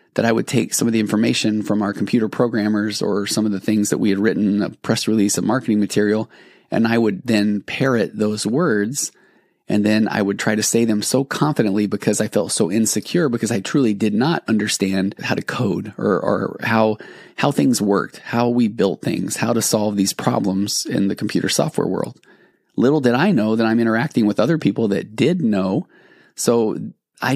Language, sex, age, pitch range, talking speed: English, male, 30-49, 105-115 Hz, 205 wpm